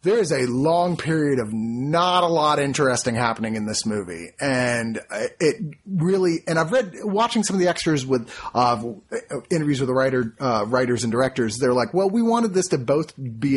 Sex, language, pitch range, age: male, English, 125-180 Hz, 30-49